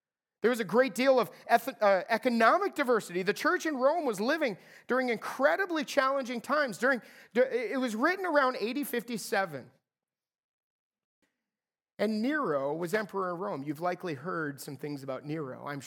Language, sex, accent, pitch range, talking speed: English, male, American, 200-280 Hz, 145 wpm